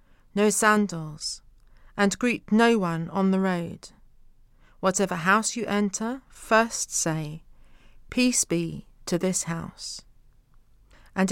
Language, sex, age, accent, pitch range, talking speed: English, female, 40-59, British, 135-215 Hz, 110 wpm